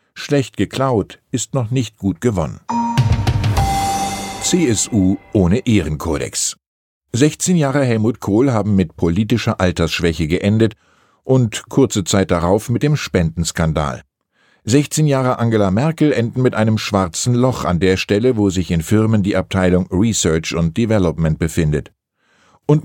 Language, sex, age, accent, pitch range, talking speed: German, male, 50-69, German, 90-125 Hz, 130 wpm